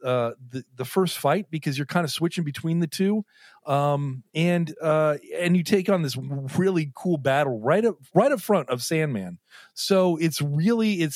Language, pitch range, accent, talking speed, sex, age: English, 145-200 Hz, American, 190 wpm, male, 30-49